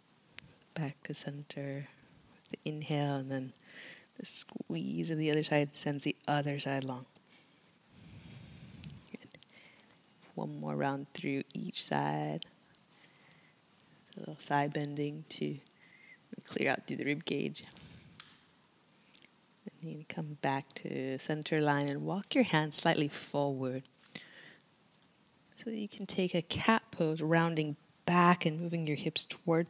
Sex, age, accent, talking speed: female, 30-49, American, 125 wpm